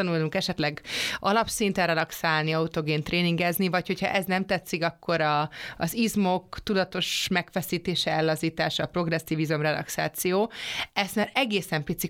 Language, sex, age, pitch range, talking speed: Hungarian, female, 30-49, 160-195 Hz, 120 wpm